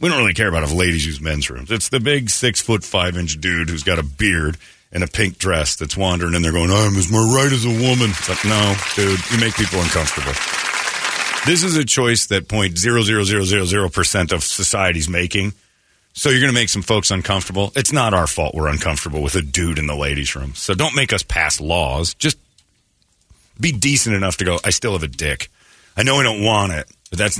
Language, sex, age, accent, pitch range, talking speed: English, male, 40-59, American, 85-115 Hz, 215 wpm